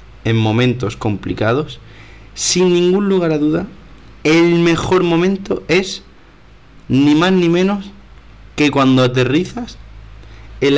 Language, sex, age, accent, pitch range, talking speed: Spanish, male, 30-49, Spanish, 115-165 Hz, 110 wpm